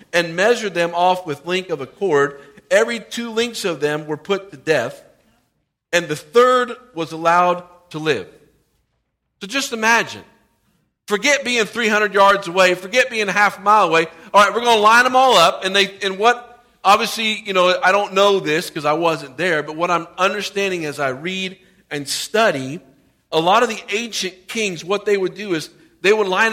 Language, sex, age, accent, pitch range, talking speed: English, male, 50-69, American, 170-210 Hz, 195 wpm